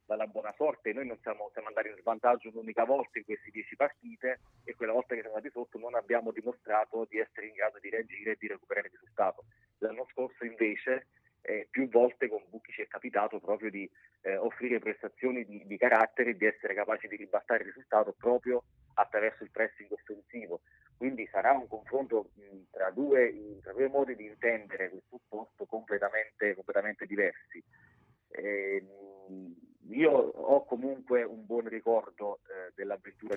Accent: native